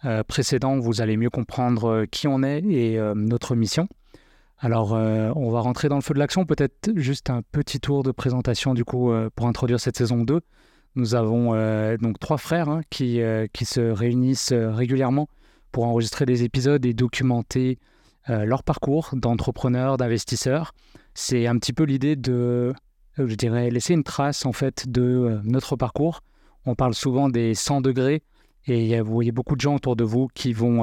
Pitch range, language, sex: 115-140 Hz, French, male